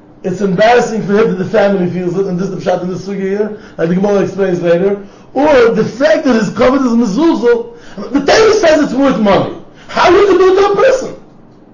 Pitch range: 175-275 Hz